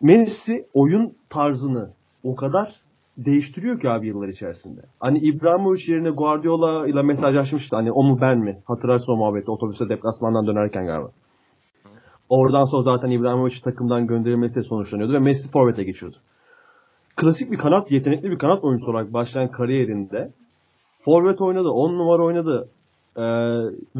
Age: 30-49